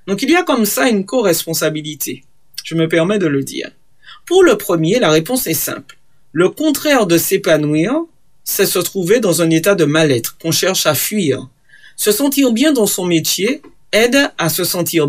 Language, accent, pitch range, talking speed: French, French, 155-205 Hz, 185 wpm